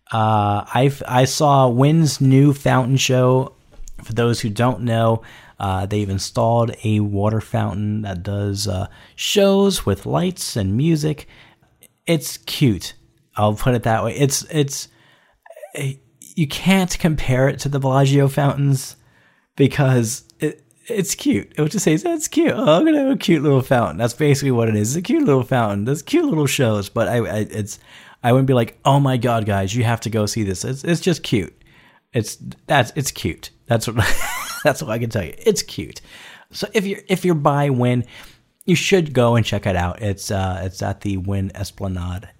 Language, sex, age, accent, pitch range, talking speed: English, male, 30-49, American, 105-145 Hz, 190 wpm